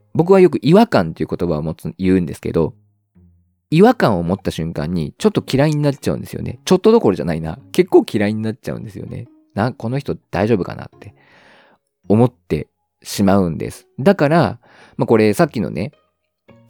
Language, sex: Japanese, male